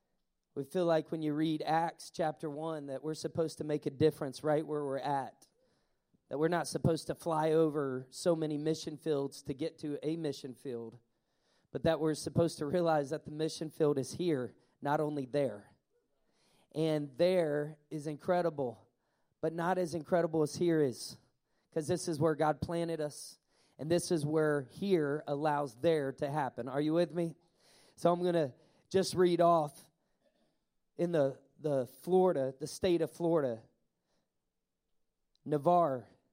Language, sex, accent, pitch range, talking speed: English, male, American, 145-180 Hz, 165 wpm